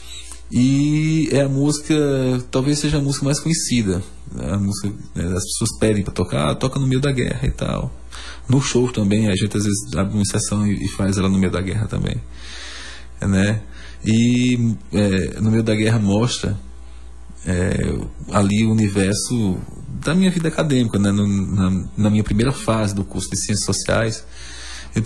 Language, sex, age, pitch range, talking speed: Portuguese, male, 20-39, 95-115 Hz, 170 wpm